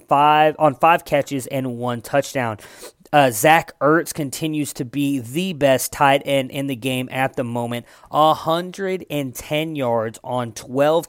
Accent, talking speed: American, 145 wpm